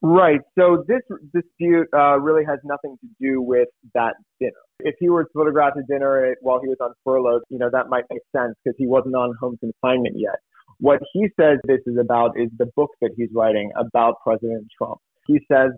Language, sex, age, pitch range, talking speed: English, male, 30-49, 120-140 Hz, 210 wpm